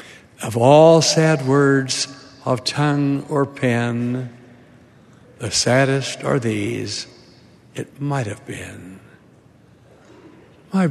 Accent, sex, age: American, male, 60-79